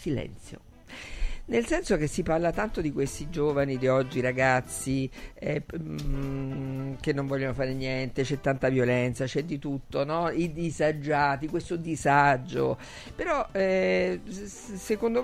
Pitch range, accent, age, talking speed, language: 130-165 Hz, native, 50-69, 130 wpm, Italian